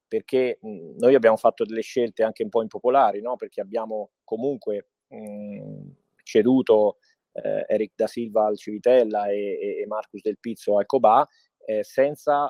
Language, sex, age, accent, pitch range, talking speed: Italian, male, 30-49, native, 110-150 Hz, 160 wpm